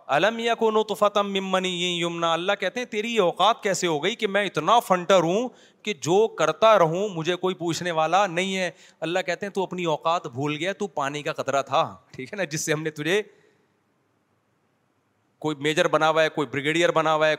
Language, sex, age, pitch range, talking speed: Urdu, male, 30-49, 155-200 Hz, 170 wpm